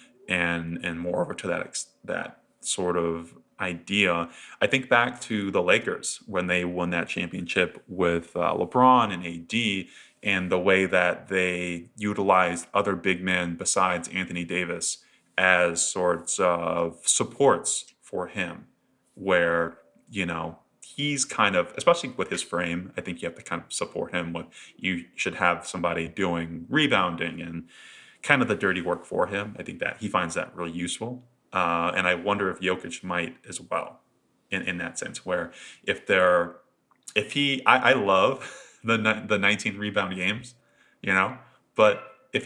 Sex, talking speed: male, 165 wpm